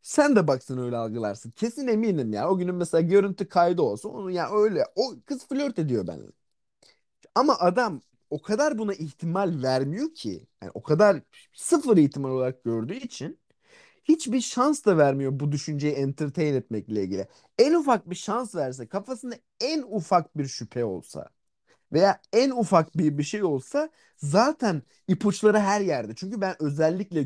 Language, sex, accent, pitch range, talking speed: Turkish, male, native, 135-210 Hz, 155 wpm